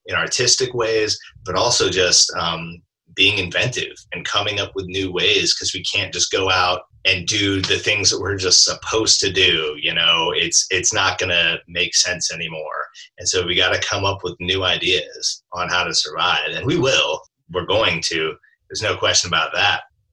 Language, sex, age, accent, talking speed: English, male, 30-49, American, 195 wpm